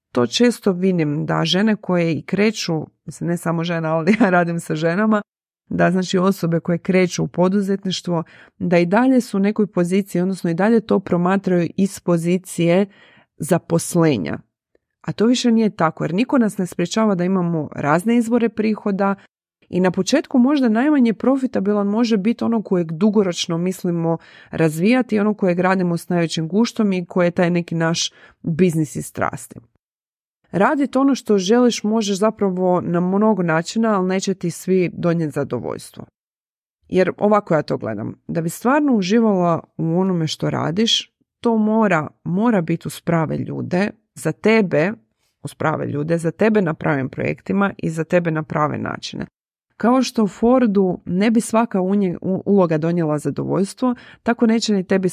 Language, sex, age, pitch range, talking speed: Croatian, female, 30-49, 170-215 Hz, 160 wpm